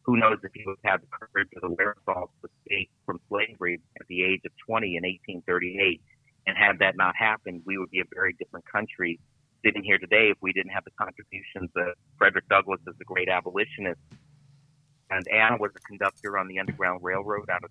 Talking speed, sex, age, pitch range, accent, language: 205 wpm, male, 40-59, 90-115 Hz, American, English